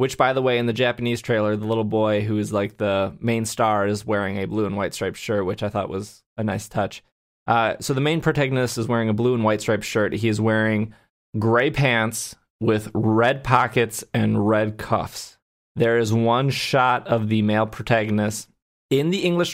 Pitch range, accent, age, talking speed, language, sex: 110-135 Hz, American, 20-39, 205 wpm, English, male